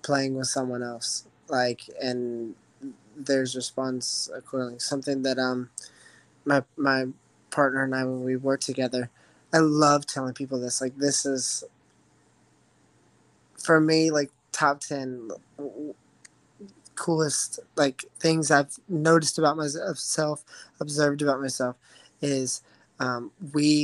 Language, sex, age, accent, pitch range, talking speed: English, male, 20-39, American, 130-145 Hz, 120 wpm